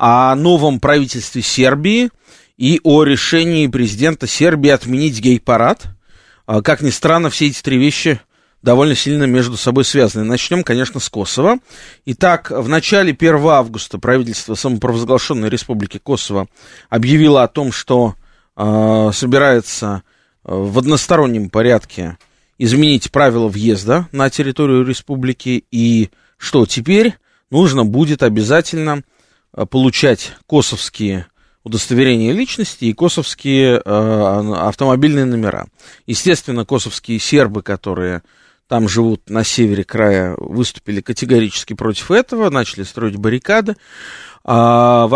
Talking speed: 110 wpm